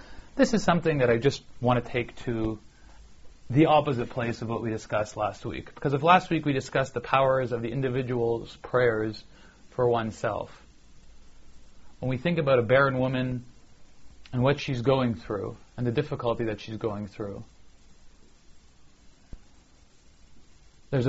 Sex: male